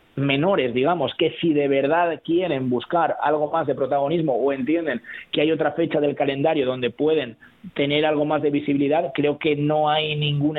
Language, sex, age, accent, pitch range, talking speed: Spanish, male, 30-49, Spanish, 140-170 Hz, 180 wpm